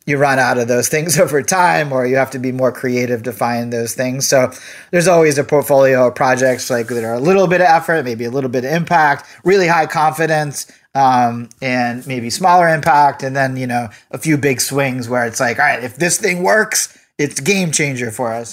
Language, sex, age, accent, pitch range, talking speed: English, male, 30-49, American, 120-155 Hz, 225 wpm